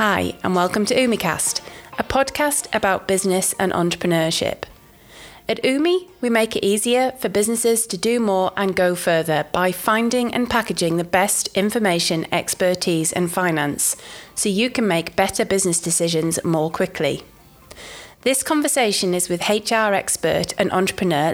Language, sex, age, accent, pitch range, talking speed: English, female, 30-49, British, 175-230 Hz, 145 wpm